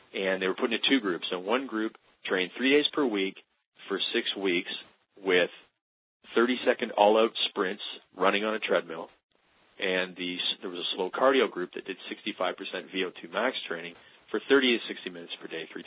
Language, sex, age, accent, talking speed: English, male, 40-59, American, 180 wpm